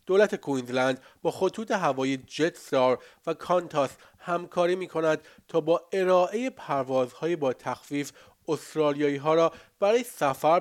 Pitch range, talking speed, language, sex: 140-175 Hz, 130 wpm, Persian, male